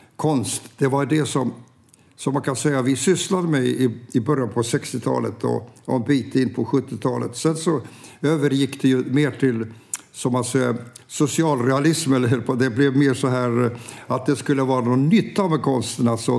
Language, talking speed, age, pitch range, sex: Swedish, 170 wpm, 60-79, 125-150 Hz, male